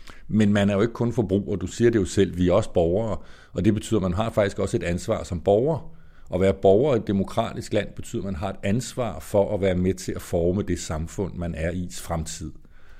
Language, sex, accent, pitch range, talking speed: Danish, male, native, 90-110 Hz, 250 wpm